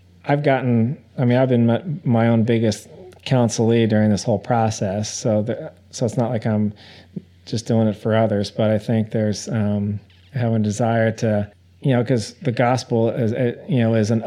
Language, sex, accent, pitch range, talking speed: English, male, American, 110-125 Hz, 195 wpm